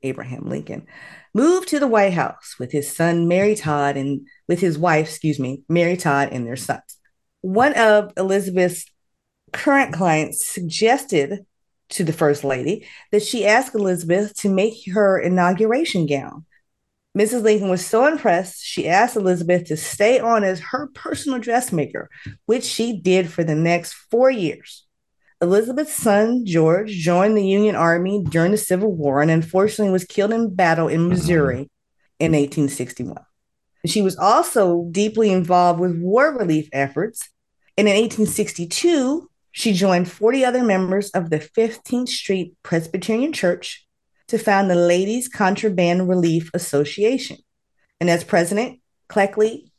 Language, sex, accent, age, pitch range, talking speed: English, female, American, 30-49, 165-215 Hz, 145 wpm